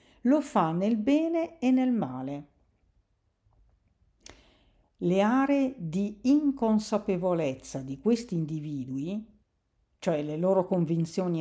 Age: 50-69